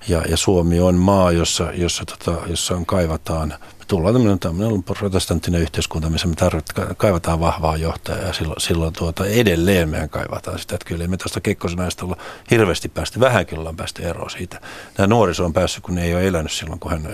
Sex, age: male, 50-69